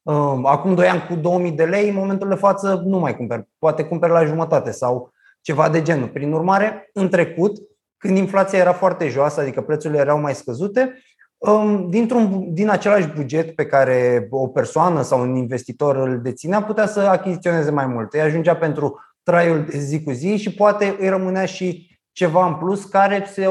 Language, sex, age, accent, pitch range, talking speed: Romanian, male, 20-39, native, 140-185 Hz, 185 wpm